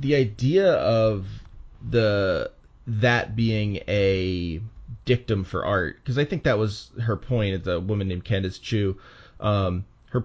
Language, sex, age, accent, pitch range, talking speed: English, male, 30-49, American, 95-120 Hz, 145 wpm